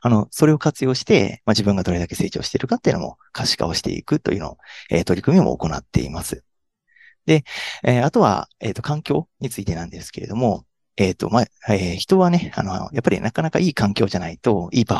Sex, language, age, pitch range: male, Japanese, 40-59, 95-145 Hz